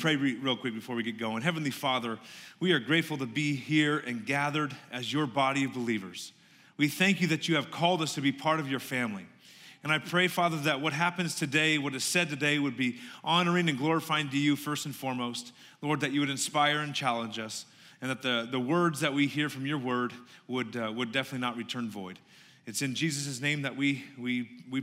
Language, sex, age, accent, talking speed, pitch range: English, male, 30-49, American, 220 wpm, 135-175 Hz